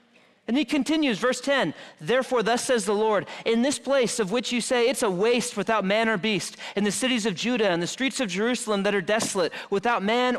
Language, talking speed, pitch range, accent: English, 225 wpm, 165-230 Hz, American